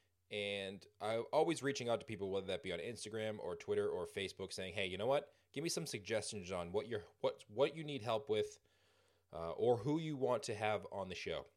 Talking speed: 230 wpm